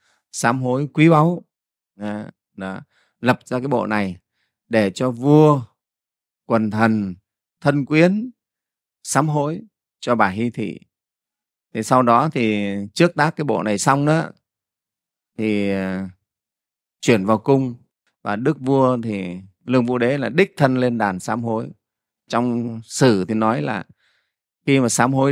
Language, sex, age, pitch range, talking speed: Vietnamese, male, 30-49, 100-130 Hz, 145 wpm